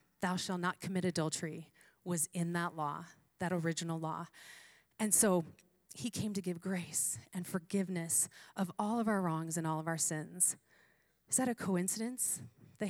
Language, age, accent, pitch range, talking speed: English, 30-49, American, 155-200 Hz, 165 wpm